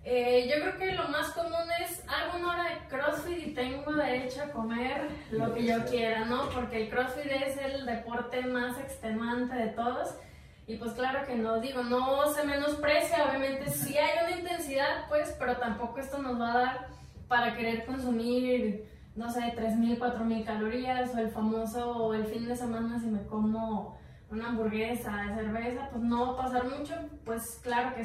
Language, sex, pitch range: Spanish, female, 230-265 Hz